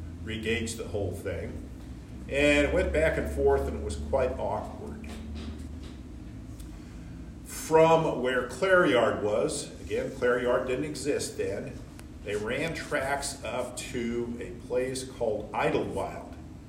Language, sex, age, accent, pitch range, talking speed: English, male, 50-69, American, 85-130 Hz, 120 wpm